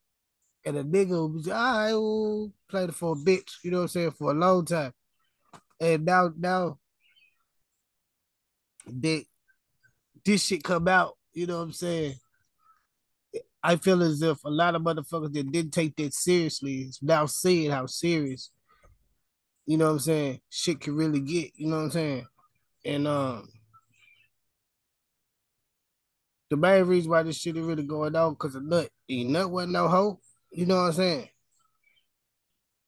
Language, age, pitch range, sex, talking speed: English, 20-39, 145-180 Hz, male, 165 wpm